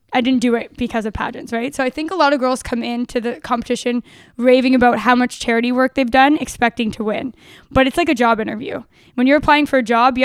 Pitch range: 230-260 Hz